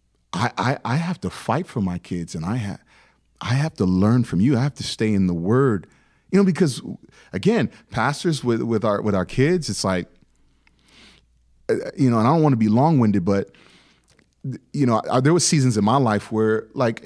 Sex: male